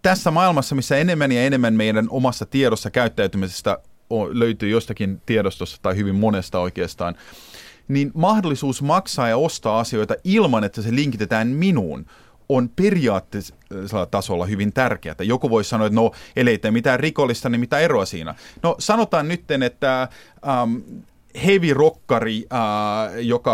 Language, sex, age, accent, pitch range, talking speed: Finnish, male, 30-49, native, 105-145 Hz, 140 wpm